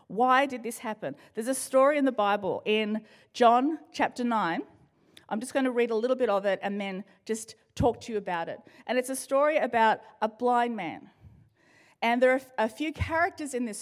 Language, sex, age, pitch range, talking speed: English, female, 40-59, 190-245 Hz, 210 wpm